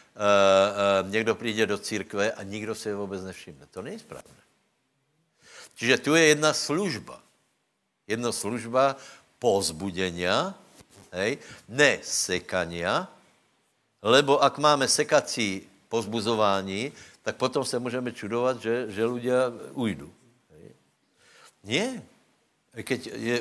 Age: 60-79